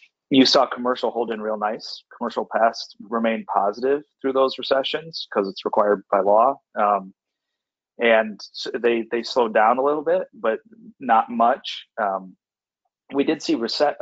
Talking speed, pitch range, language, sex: 160 wpm, 110-140 Hz, English, male